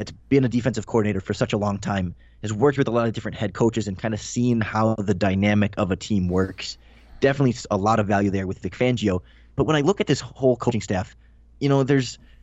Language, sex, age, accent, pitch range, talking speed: English, male, 20-39, American, 100-125 Hz, 245 wpm